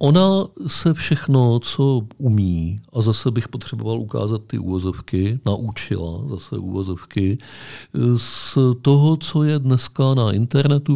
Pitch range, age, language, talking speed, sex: 105-130 Hz, 50-69, Czech, 120 wpm, male